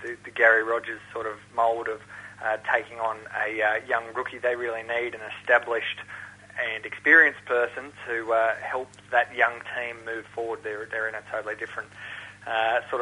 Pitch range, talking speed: 115-125 Hz, 180 wpm